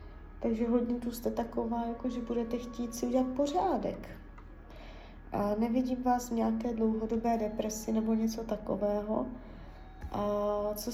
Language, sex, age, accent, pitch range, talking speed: Czech, female, 20-39, native, 210-245 Hz, 130 wpm